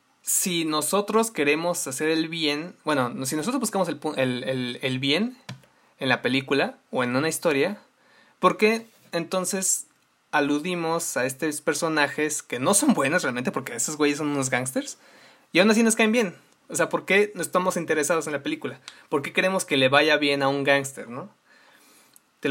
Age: 20-39